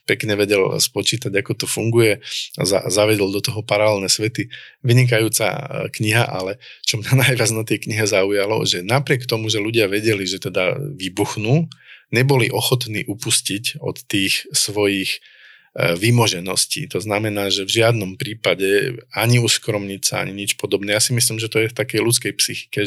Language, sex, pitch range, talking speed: Slovak, male, 100-125 Hz, 155 wpm